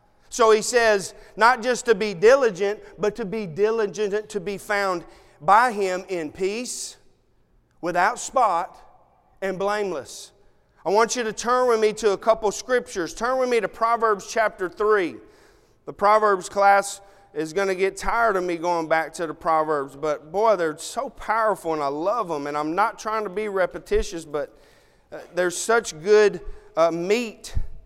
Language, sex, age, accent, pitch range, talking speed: English, male, 40-59, American, 185-230 Hz, 165 wpm